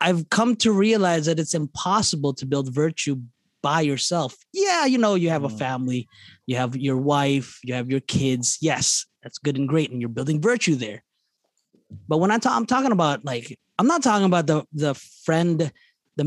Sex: male